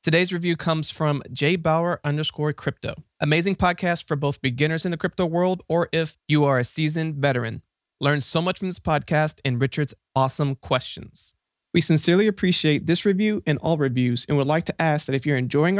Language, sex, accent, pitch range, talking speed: English, male, American, 135-170 Hz, 185 wpm